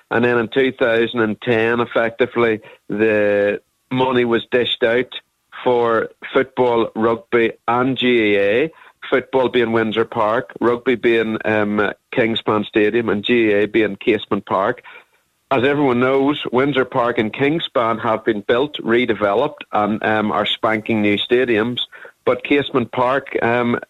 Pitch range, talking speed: 110-130 Hz, 125 wpm